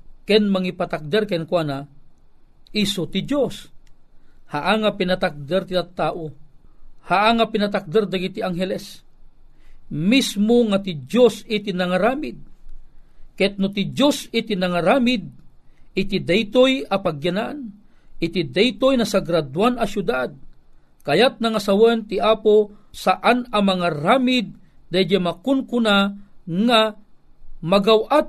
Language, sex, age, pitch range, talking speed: Filipino, male, 40-59, 190-245 Hz, 100 wpm